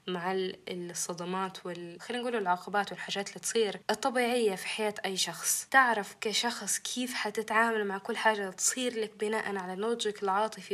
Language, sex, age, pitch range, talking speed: Arabic, female, 10-29, 185-220 Hz, 155 wpm